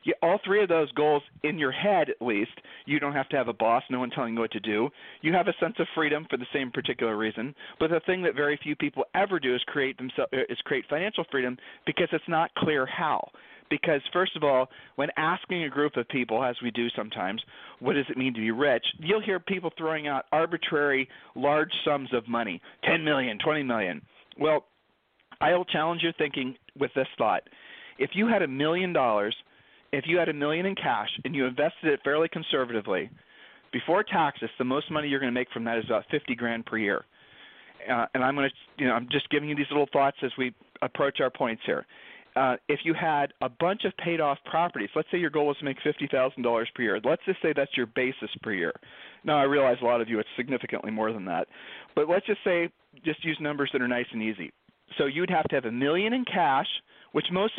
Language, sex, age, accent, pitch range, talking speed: English, male, 40-59, American, 125-165 Hz, 225 wpm